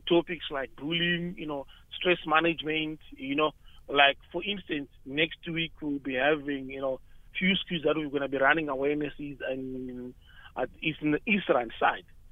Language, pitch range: English, 140-175 Hz